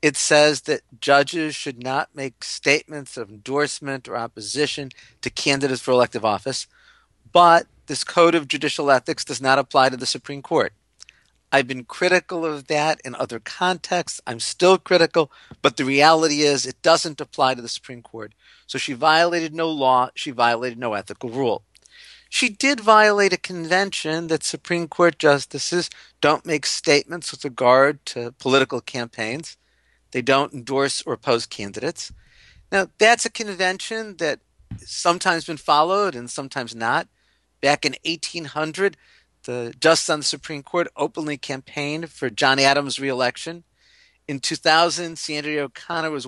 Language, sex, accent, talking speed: English, male, American, 155 wpm